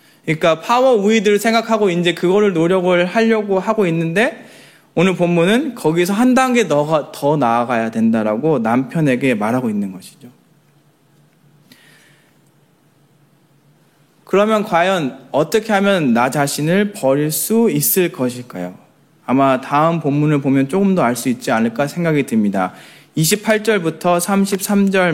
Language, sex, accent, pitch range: Korean, male, native, 140-205 Hz